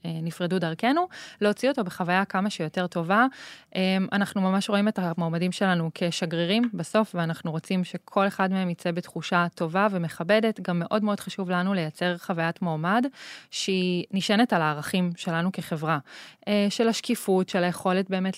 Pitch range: 170-200 Hz